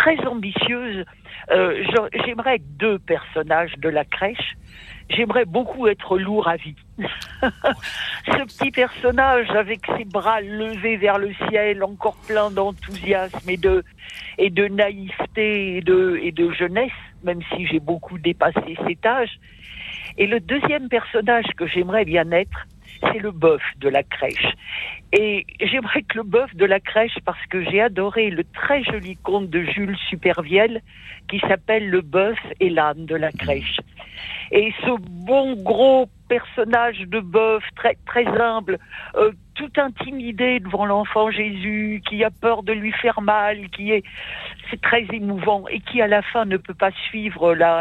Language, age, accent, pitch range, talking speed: French, 60-79, French, 185-225 Hz, 160 wpm